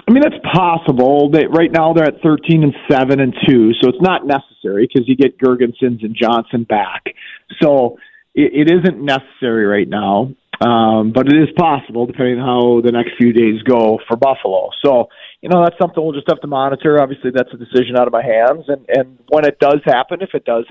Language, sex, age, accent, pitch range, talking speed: English, male, 40-59, American, 120-145 Hz, 215 wpm